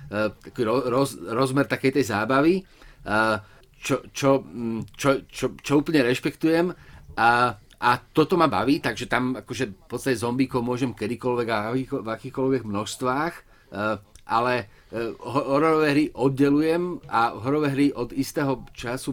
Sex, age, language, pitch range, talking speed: male, 30-49, Slovak, 115-135 Hz, 125 wpm